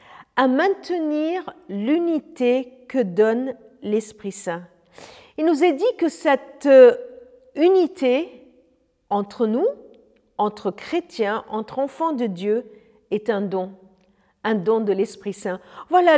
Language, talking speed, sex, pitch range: French, 110 wpm, female, 215-280 Hz